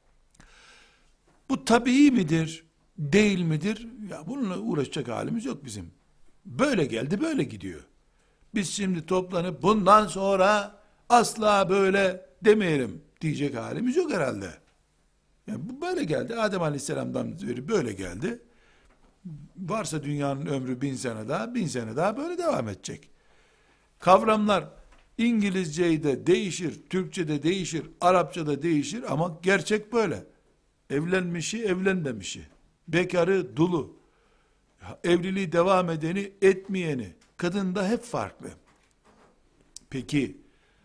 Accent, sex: native, male